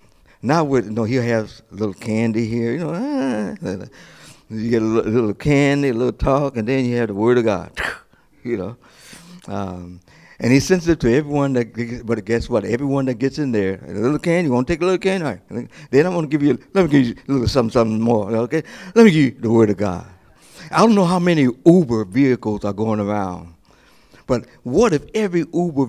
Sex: male